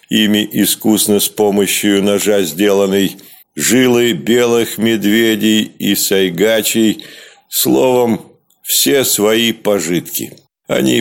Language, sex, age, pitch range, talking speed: Russian, male, 50-69, 105-120 Hz, 85 wpm